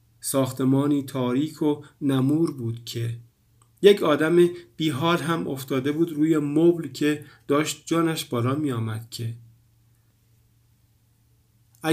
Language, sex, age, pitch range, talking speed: Persian, male, 50-69, 115-150 Hz, 100 wpm